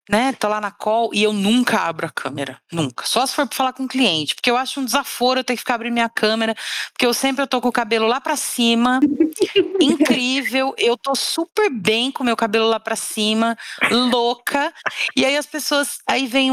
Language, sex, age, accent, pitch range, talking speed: Portuguese, female, 40-59, Brazilian, 220-315 Hz, 225 wpm